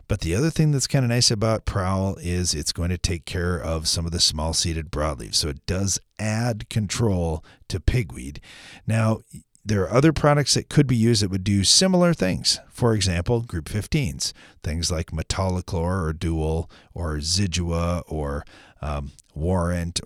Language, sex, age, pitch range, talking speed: English, male, 40-59, 85-120 Hz, 175 wpm